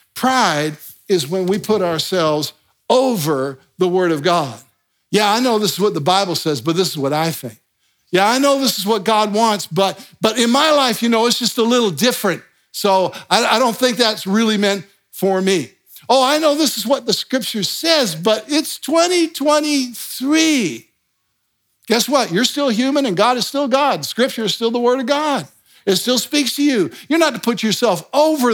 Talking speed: 205 wpm